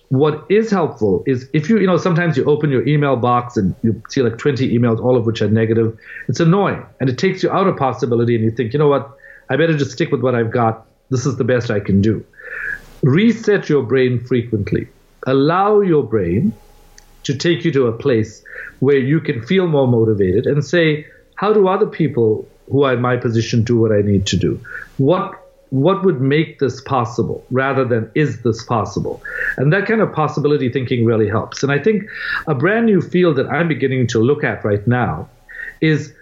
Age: 50-69